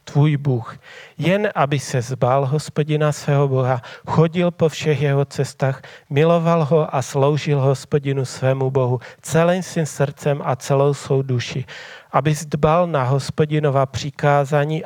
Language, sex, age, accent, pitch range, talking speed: Czech, male, 40-59, native, 135-155 Hz, 135 wpm